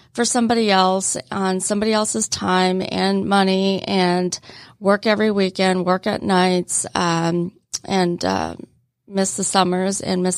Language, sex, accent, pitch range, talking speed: English, female, American, 185-200 Hz, 140 wpm